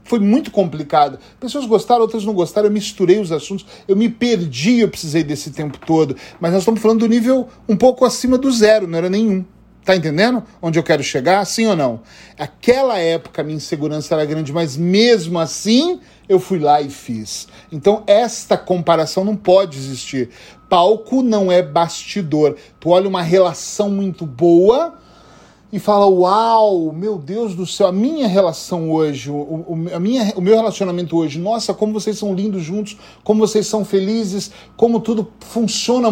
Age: 40-59